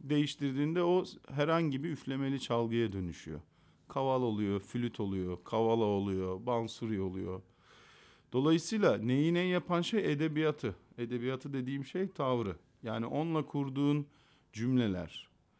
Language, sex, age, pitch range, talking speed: Turkish, male, 50-69, 115-160 Hz, 110 wpm